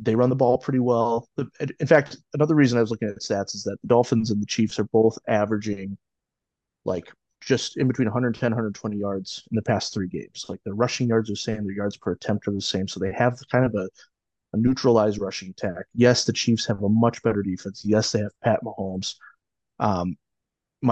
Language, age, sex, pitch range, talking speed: English, 30-49, male, 100-120 Hz, 215 wpm